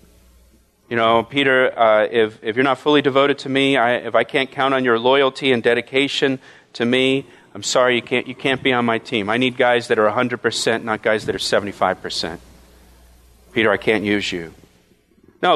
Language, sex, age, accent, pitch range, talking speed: English, male, 40-59, American, 135-215 Hz, 195 wpm